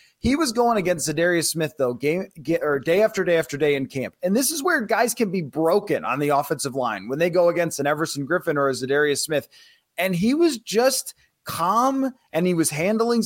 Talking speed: 215 wpm